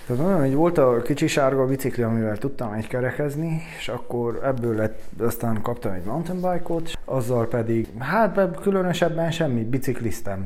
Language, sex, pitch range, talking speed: Hungarian, male, 110-145 Hz, 130 wpm